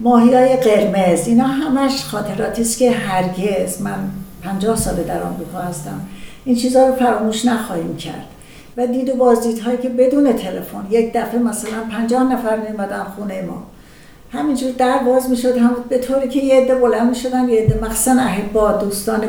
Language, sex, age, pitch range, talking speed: Persian, female, 60-79, 205-245 Hz, 160 wpm